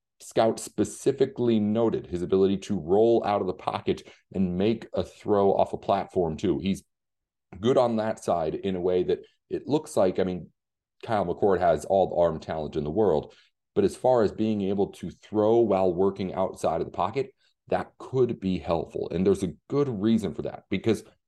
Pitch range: 90-115 Hz